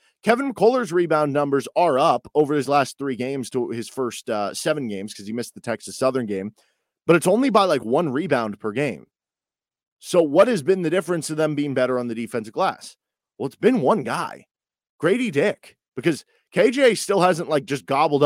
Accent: American